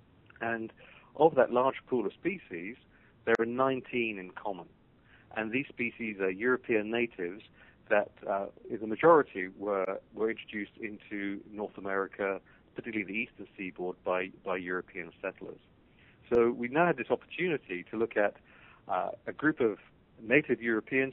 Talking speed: 145 wpm